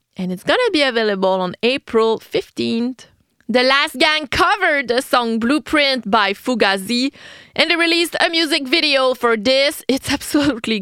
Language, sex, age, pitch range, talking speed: English, female, 30-49, 195-285 Hz, 155 wpm